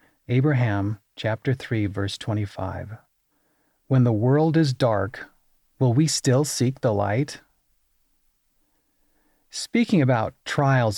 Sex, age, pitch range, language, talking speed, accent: male, 40-59, 110-145 Hz, English, 105 wpm, American